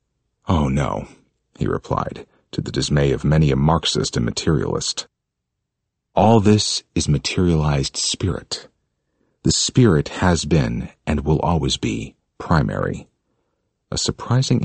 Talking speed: 120 wpm